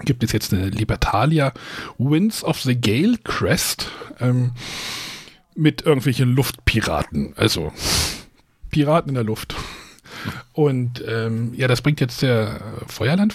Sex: male